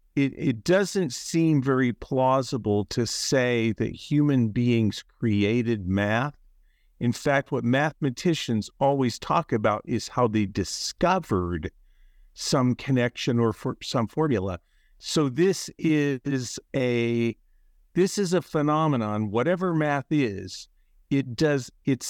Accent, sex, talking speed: American, male, 120 wpm